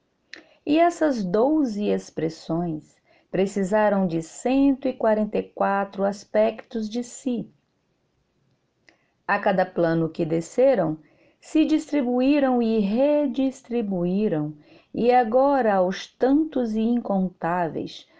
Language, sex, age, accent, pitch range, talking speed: Portuguese, female, 40-59, Brazilian, 185-260 Hz, 80 wpm